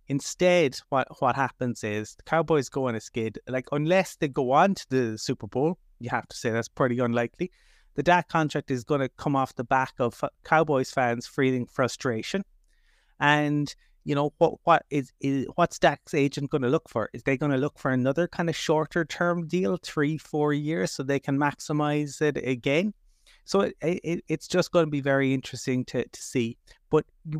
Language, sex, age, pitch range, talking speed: English, male, 30-49, 120-150 Hz, 200 wpm